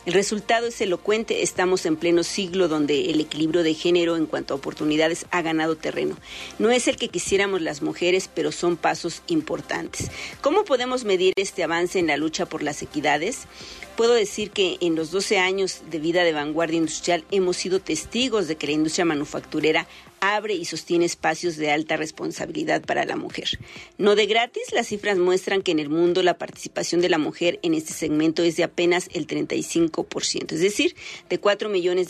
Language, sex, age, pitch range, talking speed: Spanish, female, 40-59, 160-200 Hz, 185 wpm